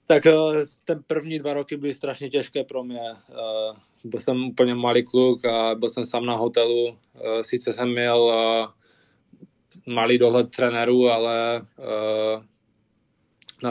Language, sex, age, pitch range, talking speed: Czech, male, 20-39, 115-125 Hz, 125 wpm